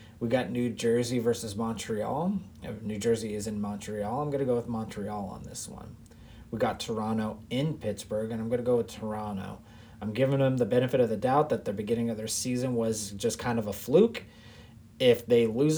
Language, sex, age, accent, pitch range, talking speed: English, male, 30-49, American, 110-130 Hz, 210 wpm